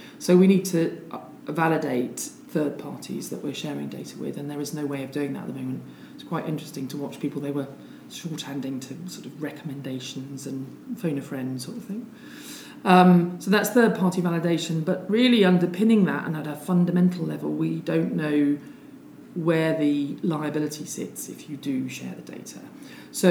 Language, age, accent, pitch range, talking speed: English, 40-59, British, 145-180 Hz, 185 wpm